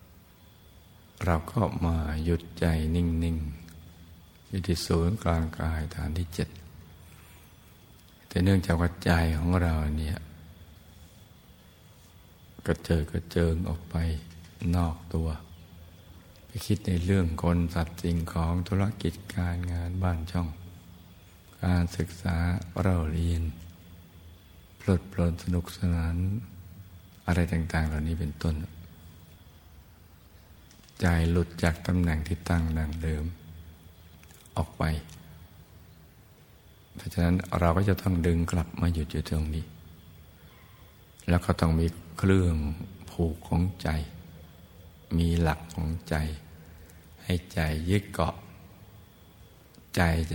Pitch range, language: 80-90 Hz, Thai